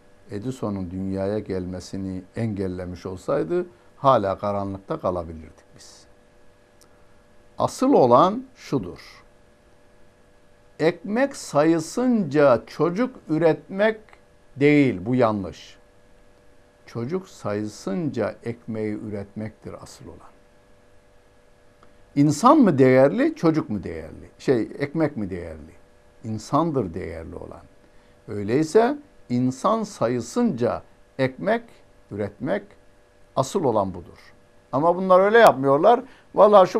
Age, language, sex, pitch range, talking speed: 60-79, Turkish, male, 100-135 Hz, 85 wpm